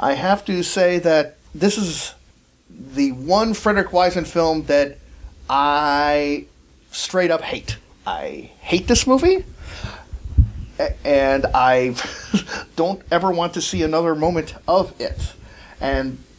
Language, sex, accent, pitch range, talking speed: English, male, American, 135-195 Hz, 120 wpm